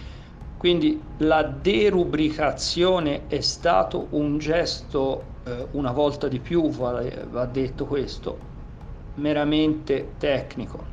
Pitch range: 135-155 Hz